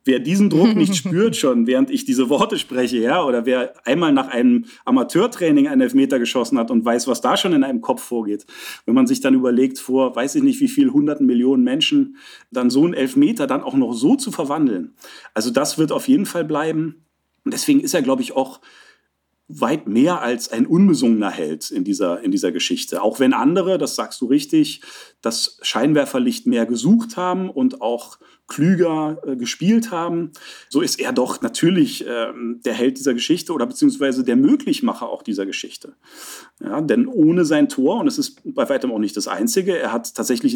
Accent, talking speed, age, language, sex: German, 195 wpm, 40-59, German, male